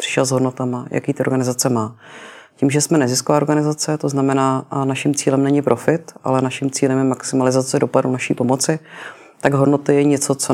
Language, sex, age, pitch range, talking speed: Czech, female, 30-49, 130-145 Hz, 180 wpm